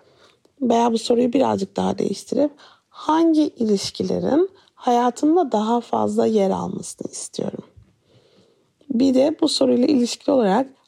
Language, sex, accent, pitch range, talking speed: Turkish, female, native, 215-280 Hz, 110 wpm